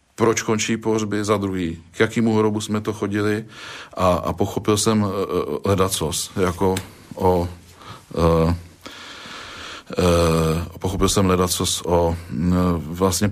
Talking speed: 105 wpm